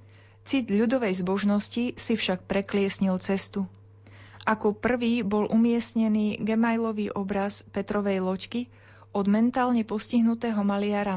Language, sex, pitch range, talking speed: Slovak, female, 190-220 Hz, 100 wpm